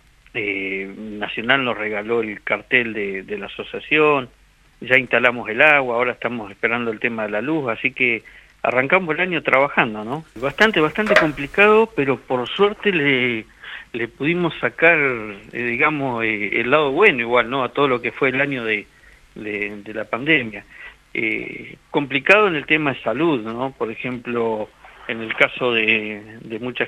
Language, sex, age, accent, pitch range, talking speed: Spanish, male, 50-69, Argentinian, 110-135 Hz, 165 wpm